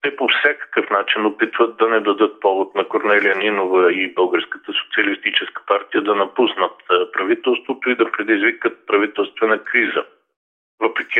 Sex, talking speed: male, 135 wpm